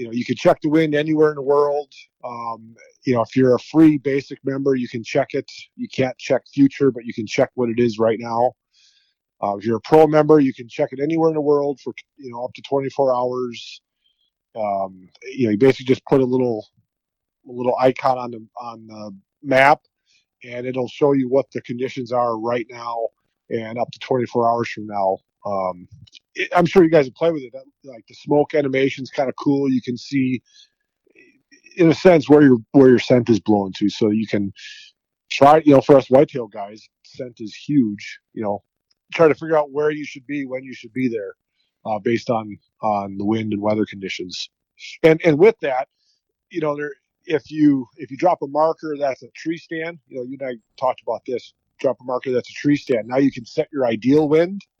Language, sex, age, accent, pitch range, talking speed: English, male, 30-49, American, 115-150 Hz, 220 wpm